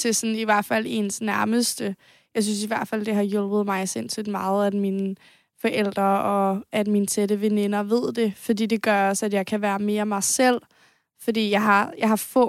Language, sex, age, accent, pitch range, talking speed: Danish, female, 20-39, native, 205-225 Hz, 215 wpm